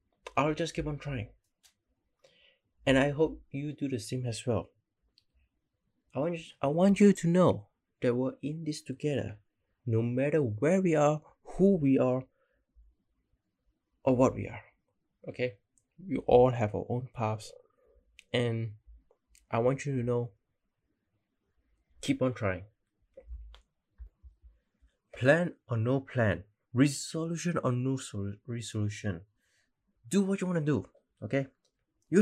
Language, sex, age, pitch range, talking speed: English, male, 20-39, 105-140 Hz, 130 wpm